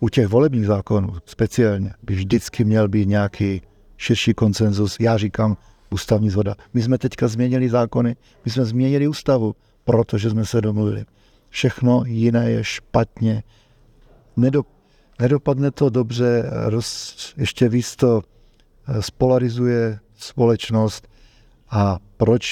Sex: male